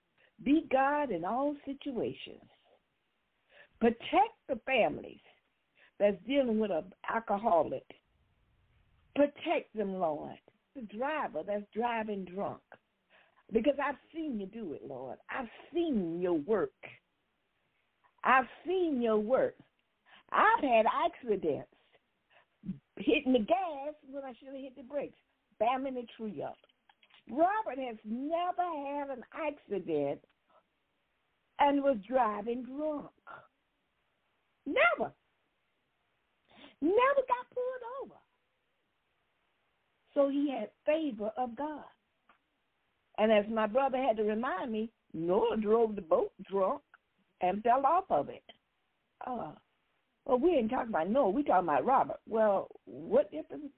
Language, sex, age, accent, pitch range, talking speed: English, female, 60-79, American, 220-300 Hz, 120 wpm